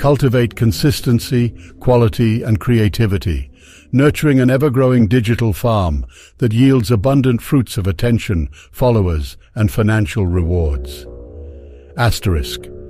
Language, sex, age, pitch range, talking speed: English, male, 60-79, 100-130 Hz, 100 wpm